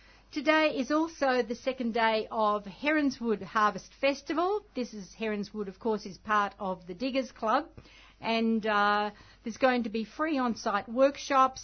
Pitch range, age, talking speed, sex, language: 205-255 Hz, 50-69, 155 wpm, female, English